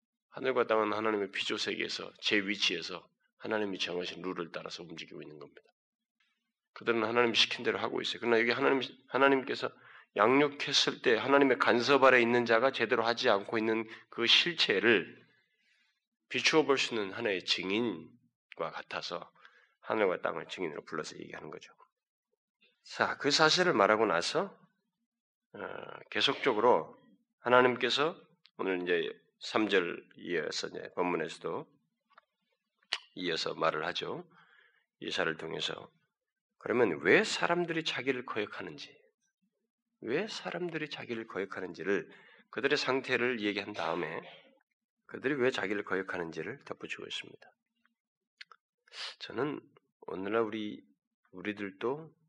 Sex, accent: male, native